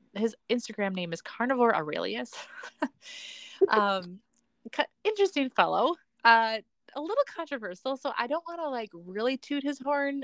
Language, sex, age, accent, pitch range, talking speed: English, female, 20-39, American, 175-245 Hz, 135 wpm